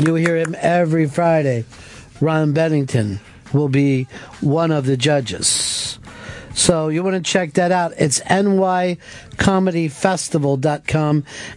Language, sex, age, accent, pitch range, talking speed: English, male, 50-69, American, 130-170 Hz, 115 wpm